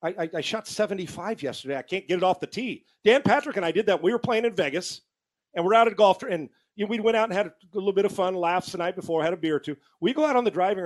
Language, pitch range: English, 160-210 Hz